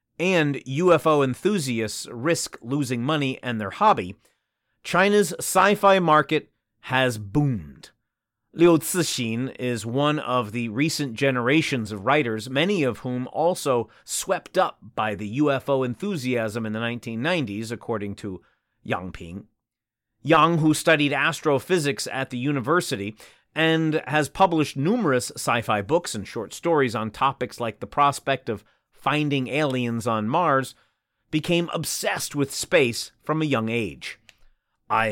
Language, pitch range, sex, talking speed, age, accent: English, 115-160 Hz, male, 130 wpm, 30-49, American